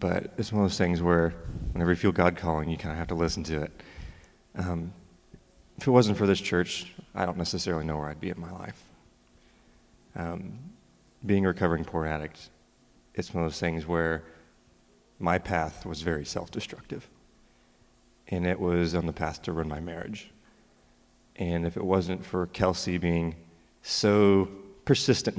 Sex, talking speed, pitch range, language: male, 175 wpm, 85-95 Hz, English